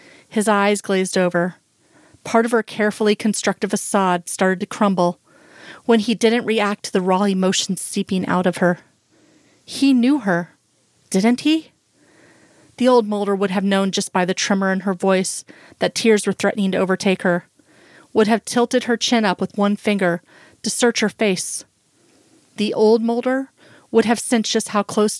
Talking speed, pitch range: 170 wpm, 190-220 Hz